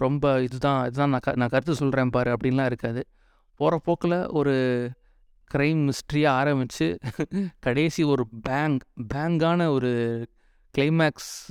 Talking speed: 115 wpm